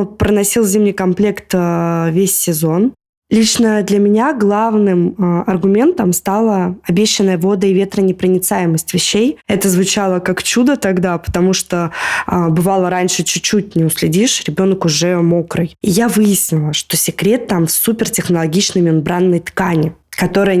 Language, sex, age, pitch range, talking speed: Russian, female, 20-39, 175-205 Hz, 125 wpm